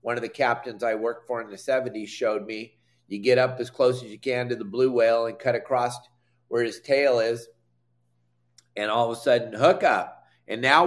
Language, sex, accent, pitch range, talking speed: English, male, American, 115-140 Hz, 220 wpm